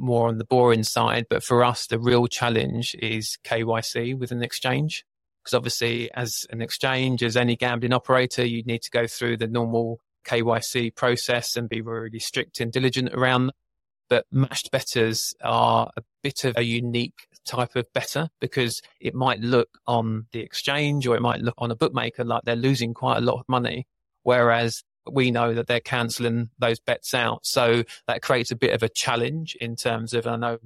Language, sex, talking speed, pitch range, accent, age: English, male, 195 wpm, 115-125 Hz, British, 20-39